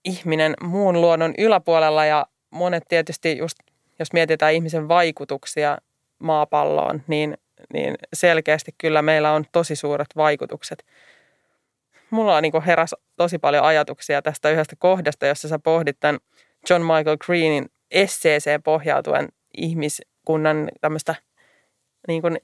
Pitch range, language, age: 150-180 Hz, Finnish, 20-39